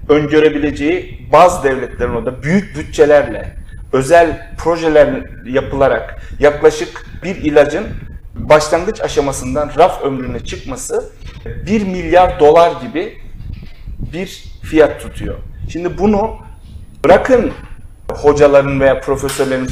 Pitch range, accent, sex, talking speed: 125-180 Hz, native, male, 90 wpm